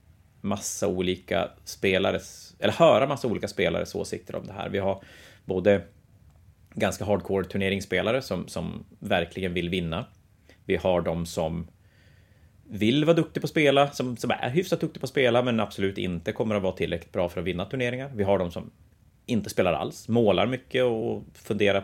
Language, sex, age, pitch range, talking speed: Swedish, male, 30-49, 90-115 Hz, 175 wpm